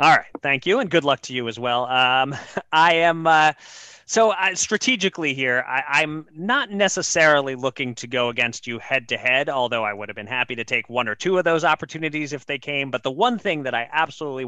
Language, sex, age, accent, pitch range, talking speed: English, male, 30-49, American, 120-150 Hz, 230 wpm